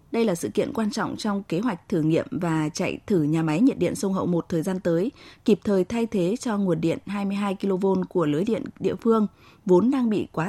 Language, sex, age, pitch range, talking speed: Vietnamese, female, 20-39, 175-230 Hz, 240 wpm